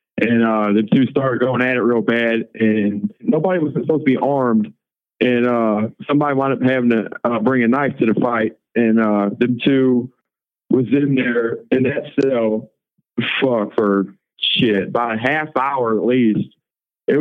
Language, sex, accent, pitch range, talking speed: English, male, American, 110-135 Hz, 180 wpm